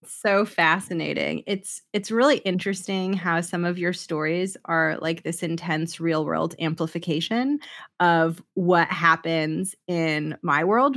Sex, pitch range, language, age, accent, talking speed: female, 165-190 Hz, English, 20-39, American, 130 wpm